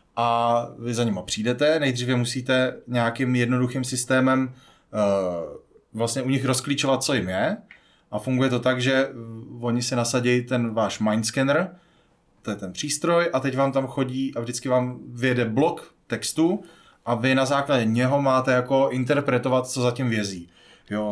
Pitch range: 115-135 Hz